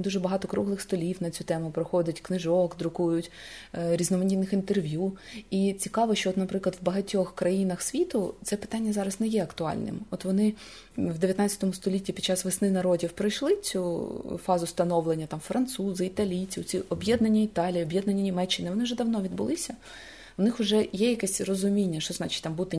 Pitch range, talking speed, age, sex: 175-200 Hz, 165 wpm, 20-39, female